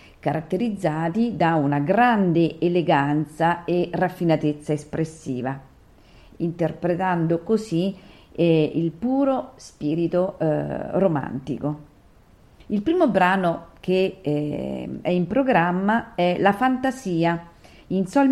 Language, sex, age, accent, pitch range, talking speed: Italian, female, 40-59, native, 160-200 Hz, 95 wpm